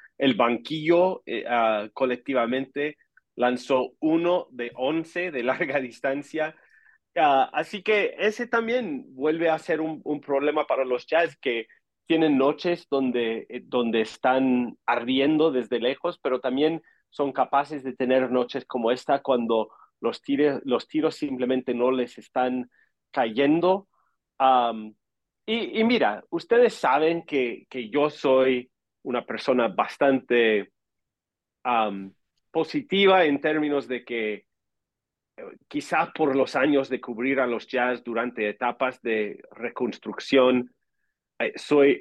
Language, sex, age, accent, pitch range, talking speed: English, male, 40-59, Mexican, 125-155 Hz, 125 wpm